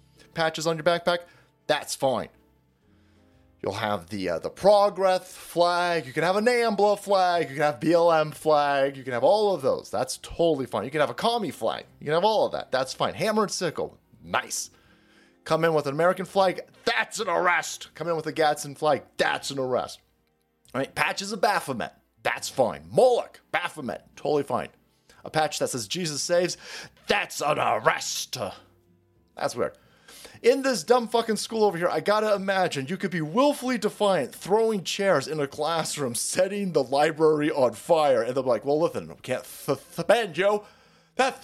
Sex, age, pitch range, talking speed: male, 30-49, 150-215 Hz, 180 wpm